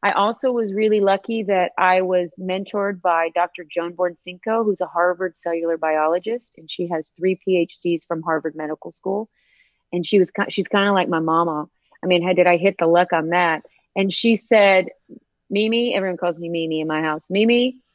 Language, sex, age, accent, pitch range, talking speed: English, female, 30-49, American, 170-205 Hz, 195 wpm